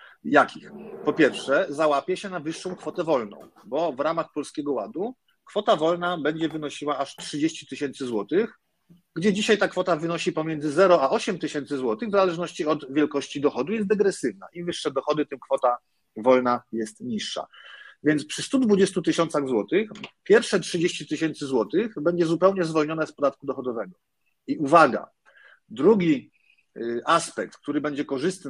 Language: Polish